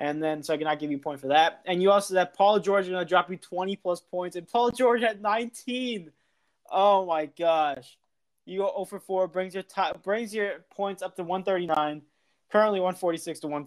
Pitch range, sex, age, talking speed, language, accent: 150-190 Hz, male, 20-39, 235 wpm, English, American